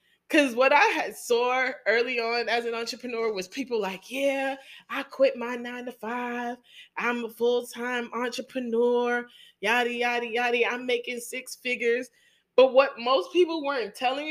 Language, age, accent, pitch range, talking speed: English, 20-39, American, 235-345 Hz, 155 wpm